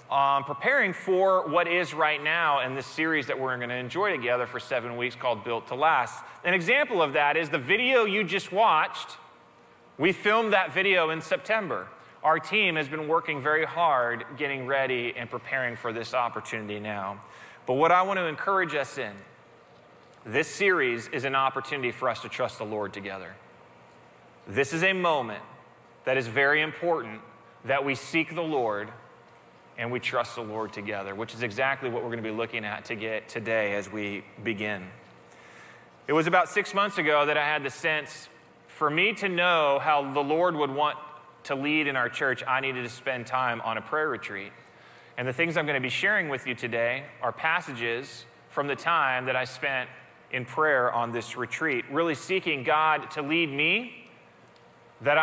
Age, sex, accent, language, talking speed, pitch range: 20-39, male, American, English, 190 wpm, 120-160 Hz